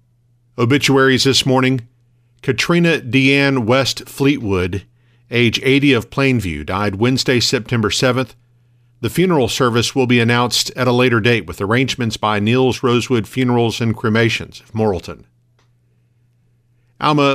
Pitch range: 115-130 Hz